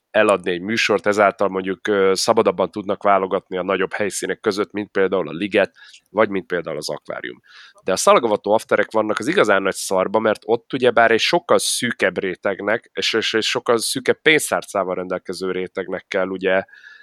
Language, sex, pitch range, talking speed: Hungarian, male, 100-120 Hz, 165 wpm